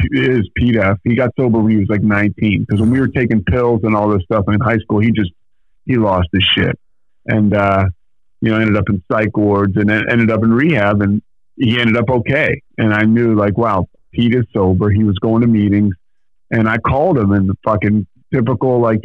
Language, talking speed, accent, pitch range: English, 225 wpm, American, 105-120 Hz